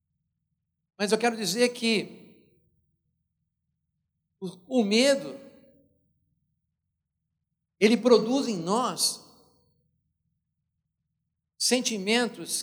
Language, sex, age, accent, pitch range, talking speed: Portuguese, male, 60-79, Brazilian, 185-235 Hz, 55 wpm